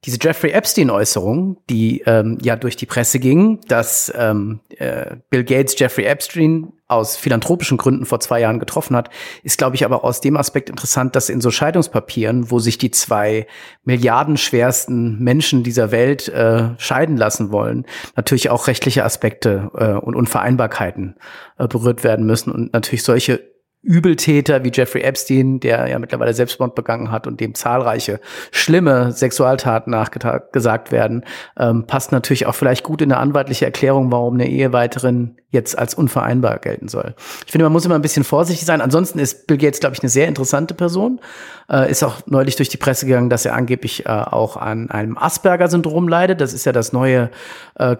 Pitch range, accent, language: 120-150 Hz, German, German